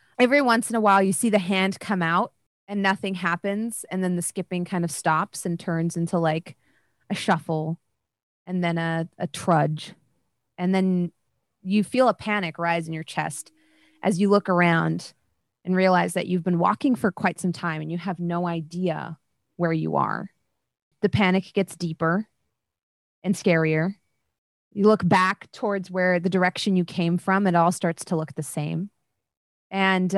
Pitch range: 165-200 Hz